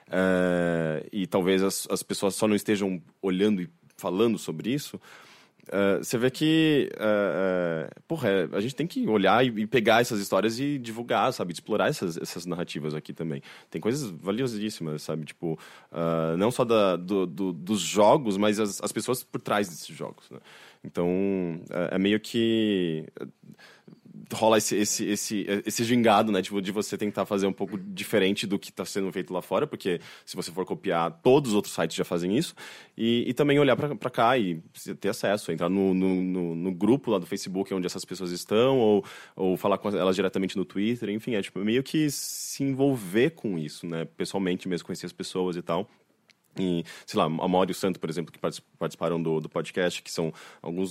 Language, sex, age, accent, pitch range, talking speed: Portuguese, male, 20-39, Brazilian, 85-115 Hz, 195 wpm